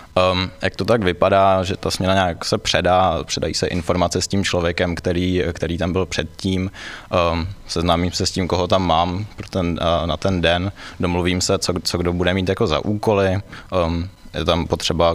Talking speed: 175 wpm